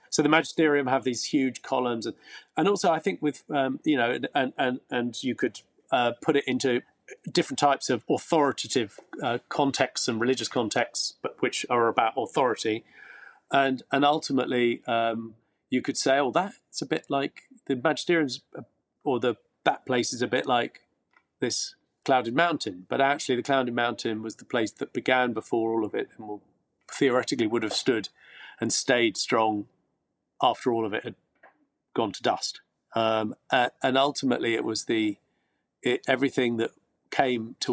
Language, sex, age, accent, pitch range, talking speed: English, male, 40-59, British, 115-145 Hz, 170 wpm